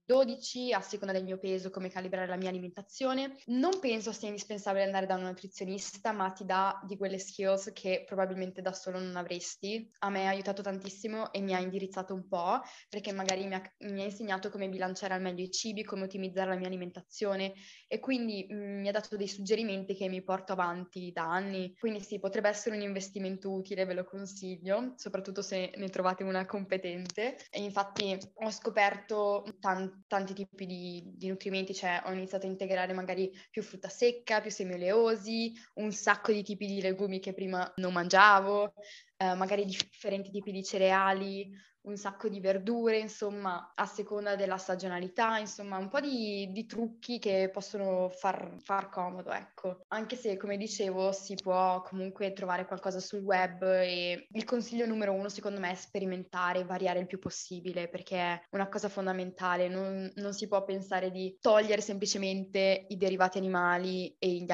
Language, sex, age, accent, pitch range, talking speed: Italian, female, 20-39, native, 185-205 Hz, 175 wpm